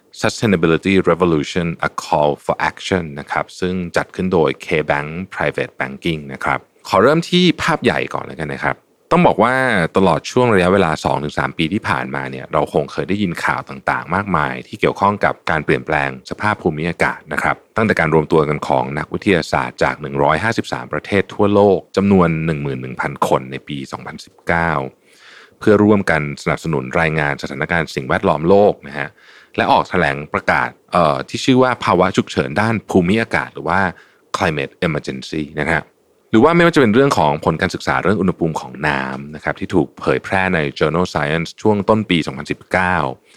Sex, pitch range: male, 75-95 Hz